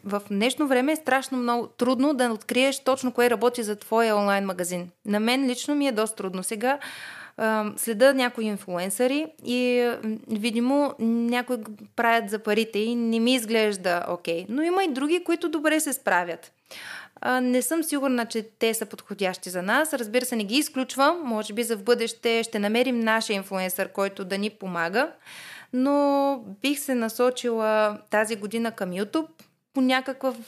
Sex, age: female, 20-39